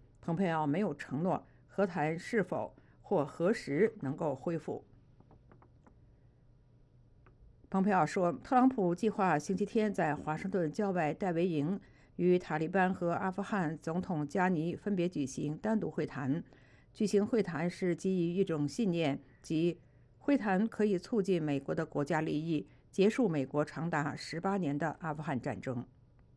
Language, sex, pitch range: English, female, 150-200 Hz